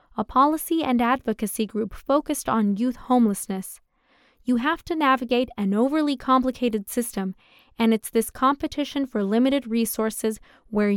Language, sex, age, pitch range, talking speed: English, female, 20-39, 215-260 Hz, 135 wpm